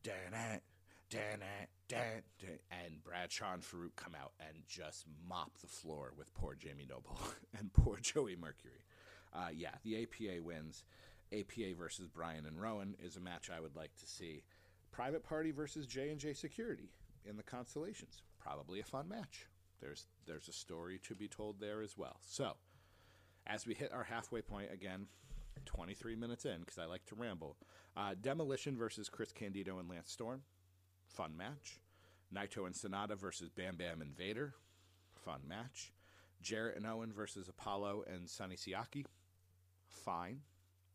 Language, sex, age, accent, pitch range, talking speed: English, male, 40-59, American, 90-105 Hz, 150 wpm